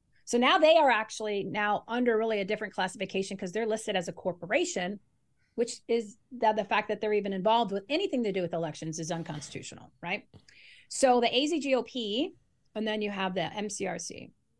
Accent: American